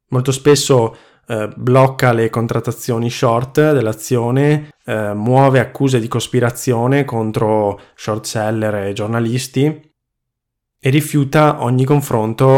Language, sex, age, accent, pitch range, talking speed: Italian, male, 20-39, native, 110-125 Hz, 105 wpm